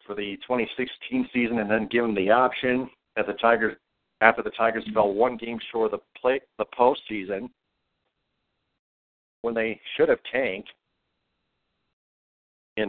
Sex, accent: male, American